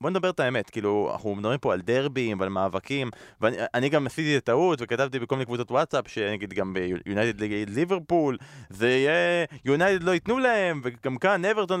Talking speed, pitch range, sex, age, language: 190 wpm, 110-145 Hz, male, 20-39, Hebrew